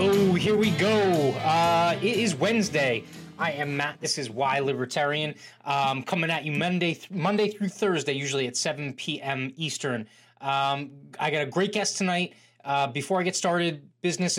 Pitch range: 135-170 Hz